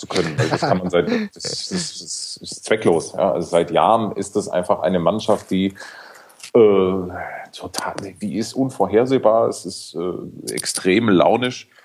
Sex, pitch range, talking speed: male, 95-130 Hz, 155 wpm